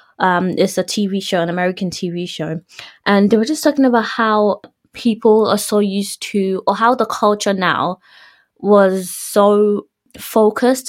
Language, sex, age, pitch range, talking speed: English, female, 20-39, 180-225 Hz, 160 wpm